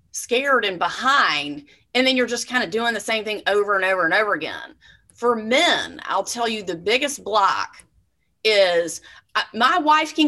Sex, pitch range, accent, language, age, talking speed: female, 215-295 Hz, American, English, 30-49, 185 wpm